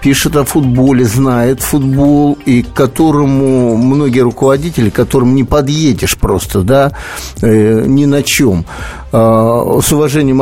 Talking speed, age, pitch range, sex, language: 130 wpm, 60-79, 120-155 Hz, male, Russian